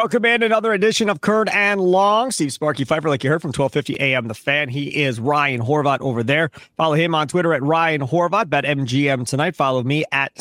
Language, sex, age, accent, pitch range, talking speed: English, male, 30-49, American, 130-165 Hz, 220 wpm